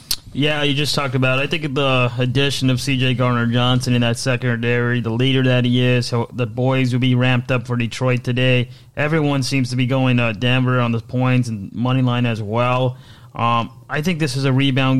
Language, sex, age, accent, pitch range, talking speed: English, male, 20-39, American, 115-130 Hz, 210 wpm